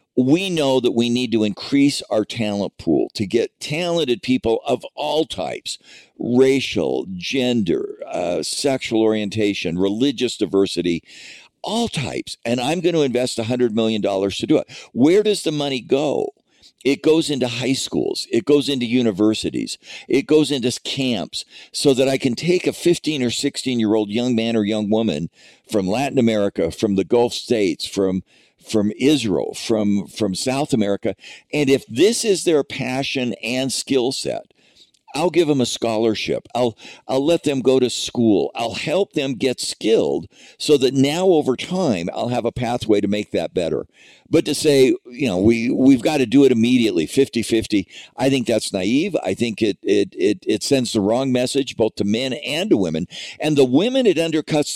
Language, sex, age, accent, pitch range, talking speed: English, male, 50-69, American, 110-145 Hz, 175 wpm